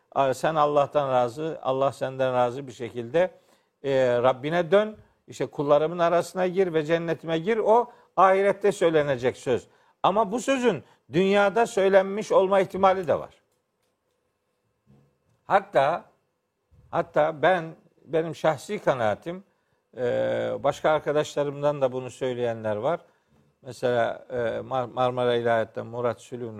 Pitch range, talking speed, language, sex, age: 140-195 Hz, 115 wpm, Turkish, male, 50-69